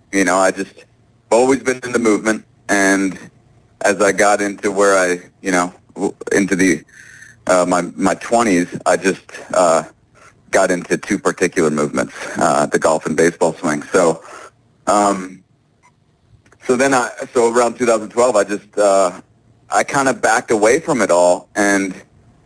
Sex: male